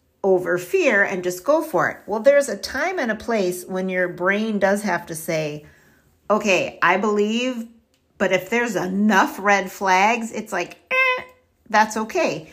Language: English